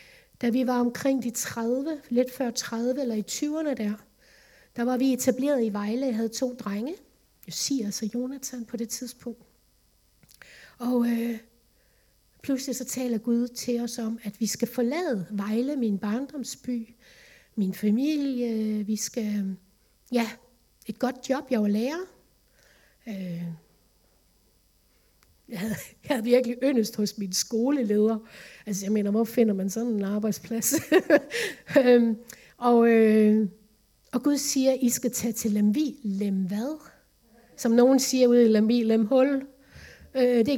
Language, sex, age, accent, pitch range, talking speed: Danish, female, 60-79, native, 220-265 Hz, 145 wpm